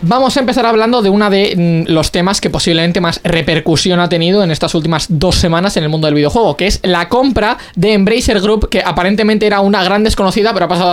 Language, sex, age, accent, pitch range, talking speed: Spanish, male, 20-39, Spanish, 170-215 Hz, 225 wpm